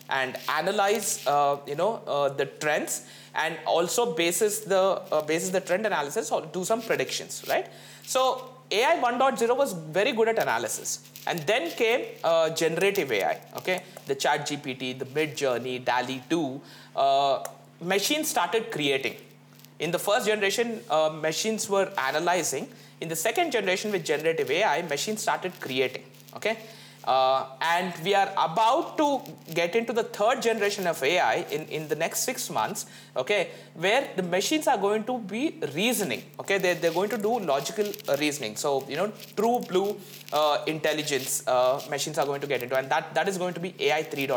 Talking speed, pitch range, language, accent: 170 wpm, 150-225 Hz, English, Indian